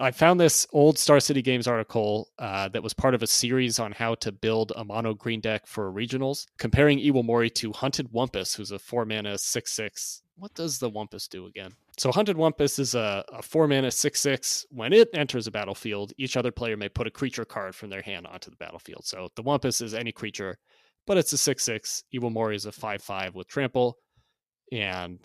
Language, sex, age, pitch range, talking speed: English, male, 30-49, 110-140 Hz, 225 wpm